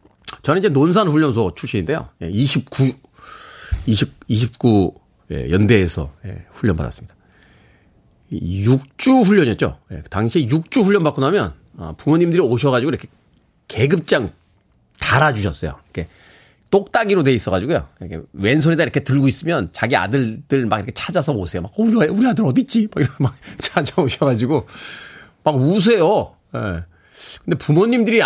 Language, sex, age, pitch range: Korean, male, 40-59, 95-140 Hz